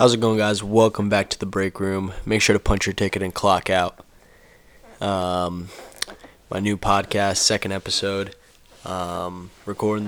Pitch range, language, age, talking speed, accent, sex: 95-105 Hz, English, 20-39, 160 wpm, American, male